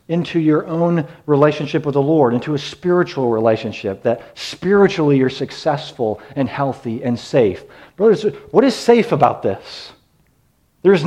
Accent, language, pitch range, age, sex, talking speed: American, English, 130-175 Hz, 40-59, male, 140 wpm